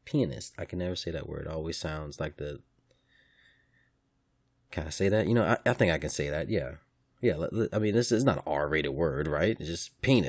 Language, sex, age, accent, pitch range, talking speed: English, male, 30-49, American, 75-90 Hz, 225 wpm